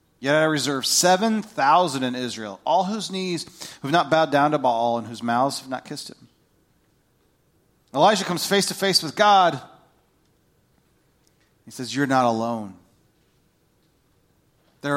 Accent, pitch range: American, 125-165 Hz